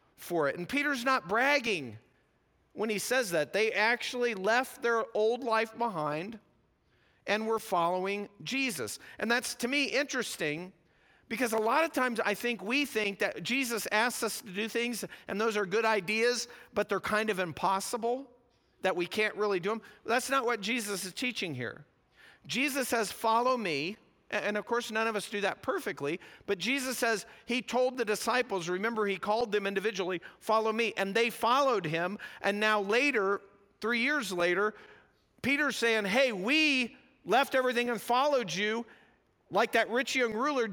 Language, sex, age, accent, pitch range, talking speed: English, male, 50-69, American, 200-250 Hz, 170 wpm